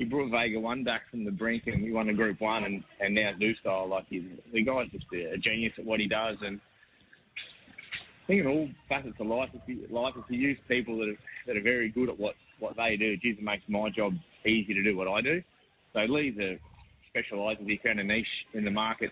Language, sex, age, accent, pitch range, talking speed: English, male, 20-39, Australian, 100-115 Hz, 230 wpm